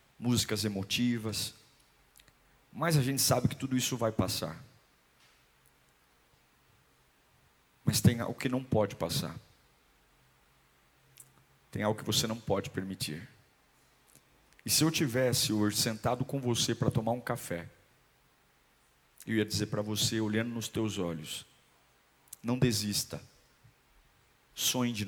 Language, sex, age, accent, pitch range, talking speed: Portuguese, male, 50-69, Brazilian, 100-130 Hz, 120 wpm